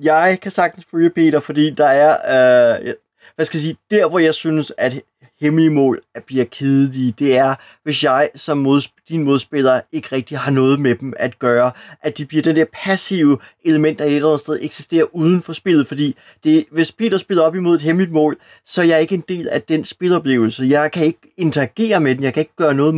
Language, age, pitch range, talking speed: Danish, 30-49, 135-170 Hz, 220 wpm